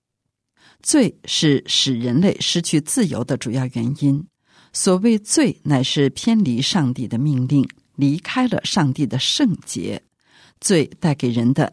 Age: 50-69